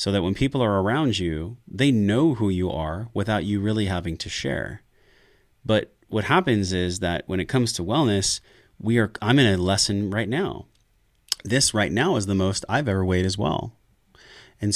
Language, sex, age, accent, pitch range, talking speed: English, male, 30-49, American, 90-110 Hz, 195 wpm